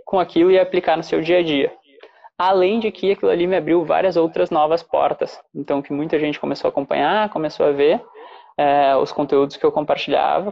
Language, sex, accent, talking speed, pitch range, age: Portuguese, male, Brazilian, 205 wpm, 150-185 Hz, 20-39